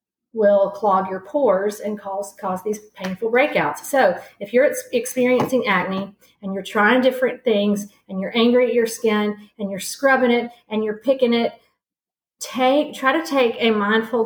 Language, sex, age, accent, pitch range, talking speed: English, female, 40-59, American, 195-230 Hz, 165 wpm